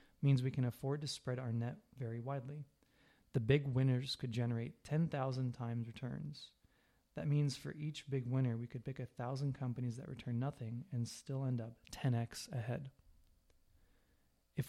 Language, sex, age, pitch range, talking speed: English, male, 20-39, 120-140 Hz, 160 wpm